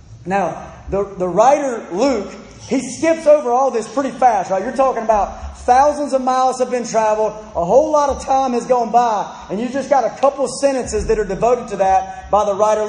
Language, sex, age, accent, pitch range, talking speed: English, male, 30-49, American, 180-250 Hz, 210 wpm